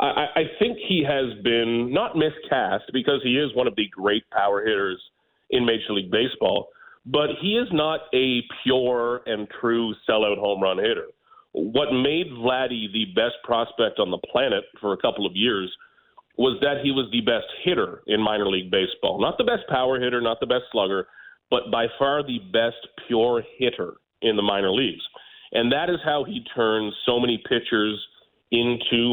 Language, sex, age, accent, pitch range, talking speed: English, male, 40-59, American, 110-155 Hz, 180 wpm